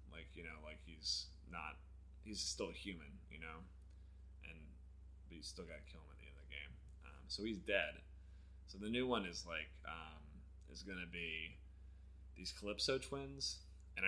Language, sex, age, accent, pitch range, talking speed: English, male, 20-39, American, 70-95 Hz, 185 wpm